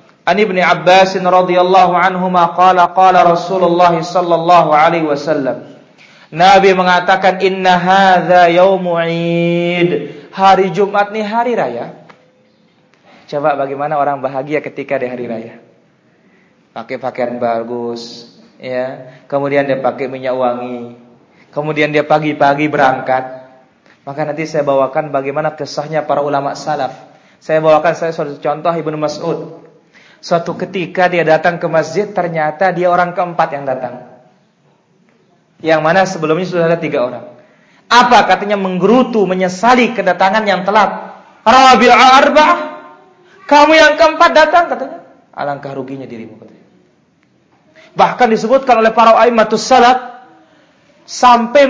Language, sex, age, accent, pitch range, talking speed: Indonesian, male, 30-49, native, 145-200 Hz, 105 wpm